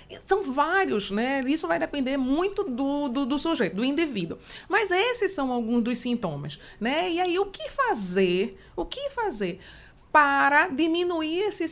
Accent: Brazilian